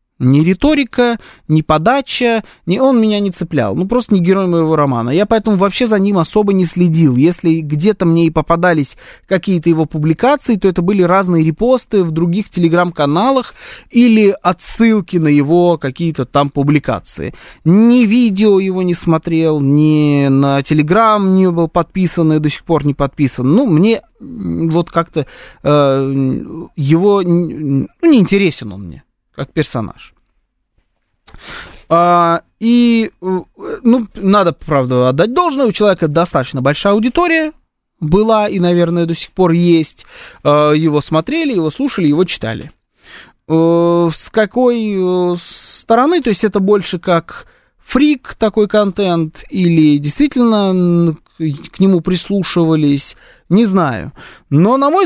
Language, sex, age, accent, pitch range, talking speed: Russian, male, 20-39, native, 155-205 Hz, 130 wpm